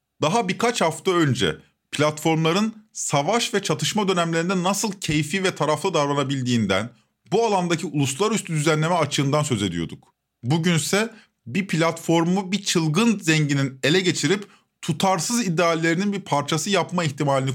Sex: male